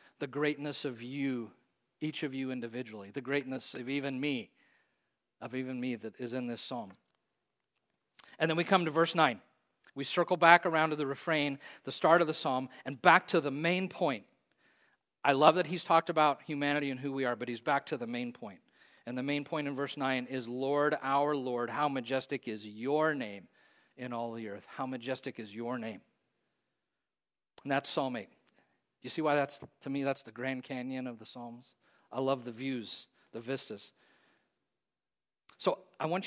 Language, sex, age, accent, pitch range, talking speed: English, male, 40-59, American, 125-160 Hz, 190 wpm